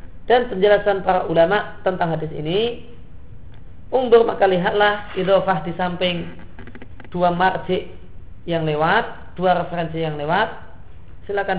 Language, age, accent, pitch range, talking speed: Indonesian, 40-59, native, 115-180 Hz, 115 wpm